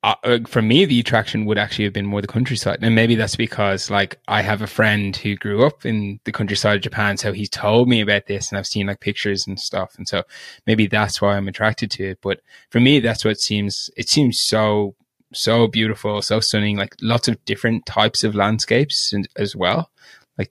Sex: male